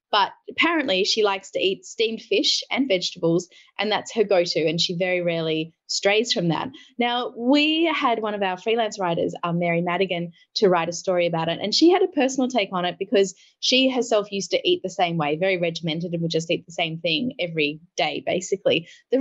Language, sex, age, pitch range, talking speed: English, female, 10-29, 175-225 Hz, 210 wpm